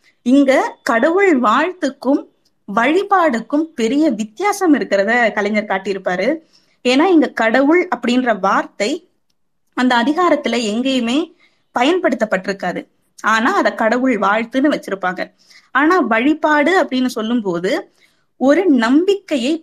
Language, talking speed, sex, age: Tamil, 90 wpm, female, 20-39